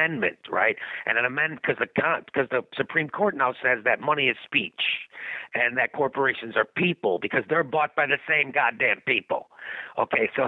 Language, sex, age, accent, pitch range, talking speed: English, male, 50-69, American, 130-155 Hz, 170 wpm